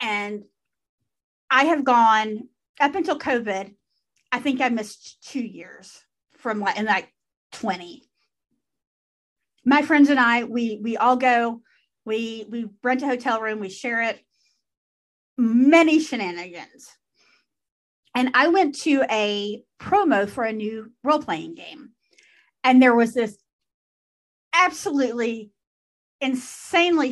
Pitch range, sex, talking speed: 220-295 Hz, female, 120 wpm